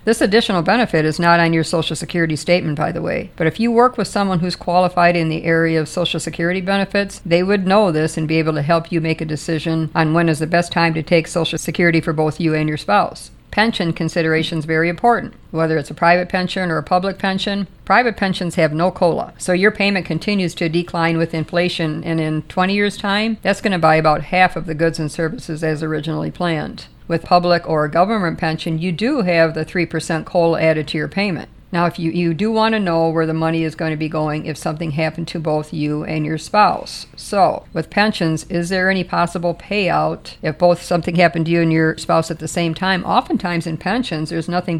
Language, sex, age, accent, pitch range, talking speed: English, female, 50-69, American, 160-185 Hz, 225 wpm